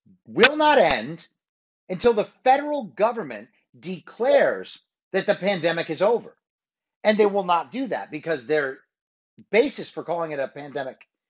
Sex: male